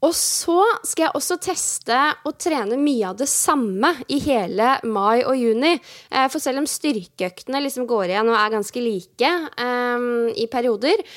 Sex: female